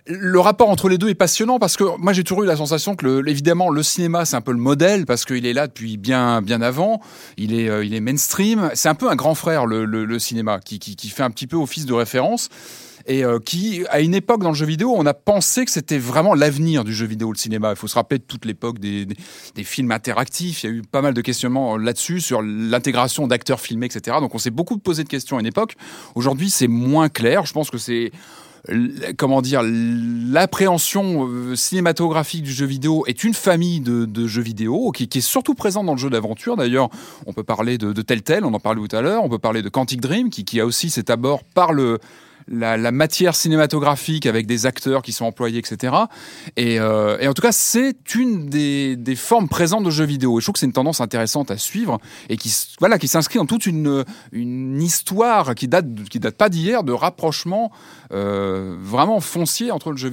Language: French